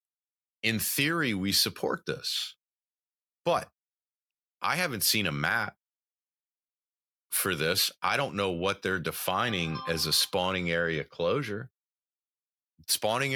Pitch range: 80-120 Hz